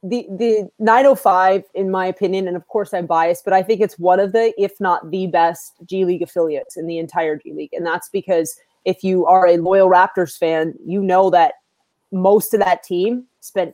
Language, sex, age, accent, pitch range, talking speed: English, female, 30-49, American, 185-225 Hz, 210 wpm